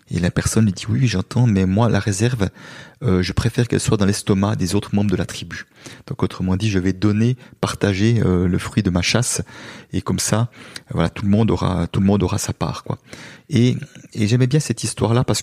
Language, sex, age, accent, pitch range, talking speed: French, male, 30-49, French, 100-125 Hz, 235 wpm